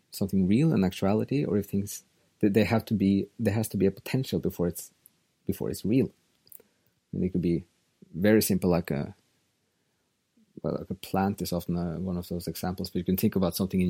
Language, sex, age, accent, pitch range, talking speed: English, male, 30-49, Norwegian, 95-110 Hz, 205 wpm